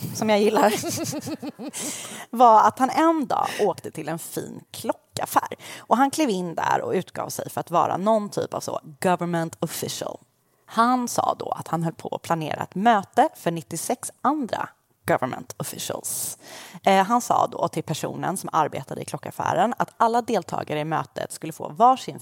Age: 30-49